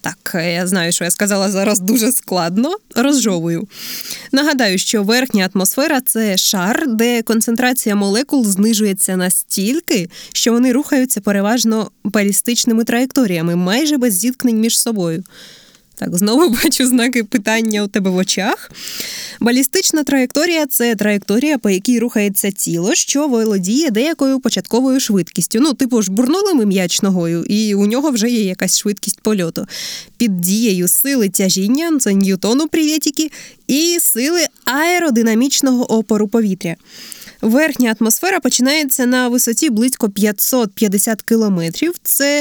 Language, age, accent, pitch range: Ukrainian, 20-39, native, 205-265 Hz